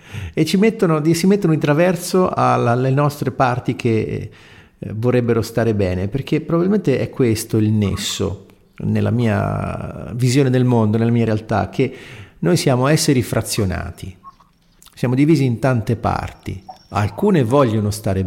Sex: male